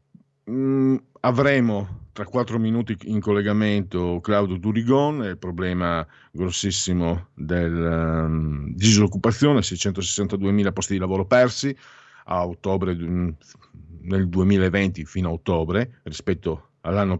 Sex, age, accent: male, 50-69, native